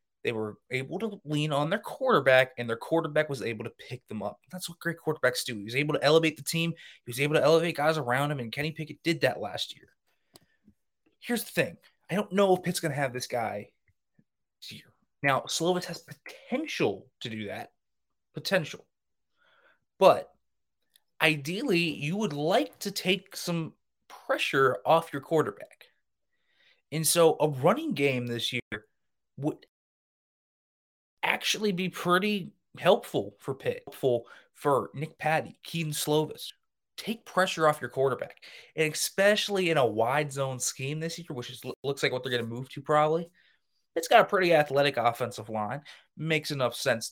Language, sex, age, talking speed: English, male, 20-39, 170 wpm